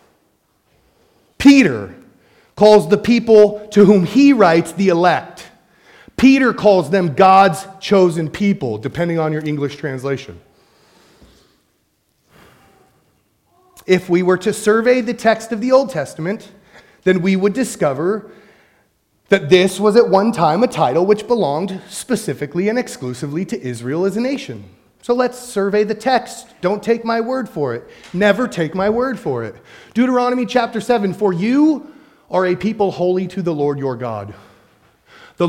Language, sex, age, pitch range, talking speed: English, male, 30-49, 160-225 Hz, 145 wpm